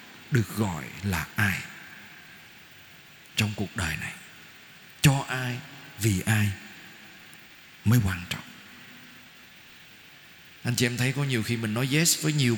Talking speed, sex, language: 130 wpm, male, Vietnamese